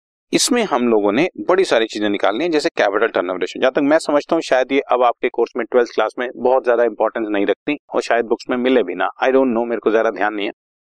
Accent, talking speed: native, 245 wpm